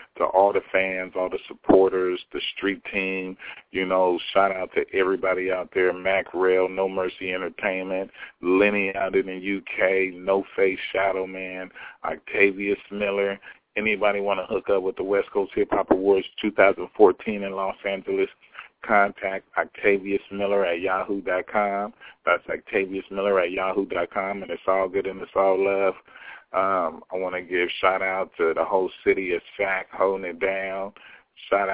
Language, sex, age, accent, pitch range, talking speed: English, male, 40-59, American, 95-100 Hz, 155 wpm